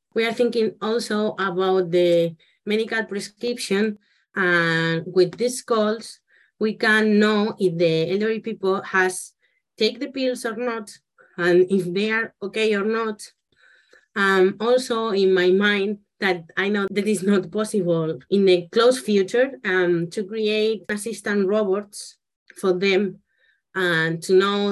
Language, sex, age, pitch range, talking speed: English, female, 30-49, 185-225 Hz, 145 wpm